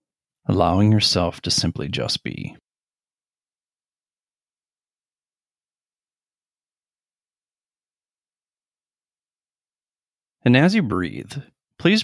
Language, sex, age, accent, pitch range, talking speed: English, male, 30-49, American, 95-125 Hz, 55 wpm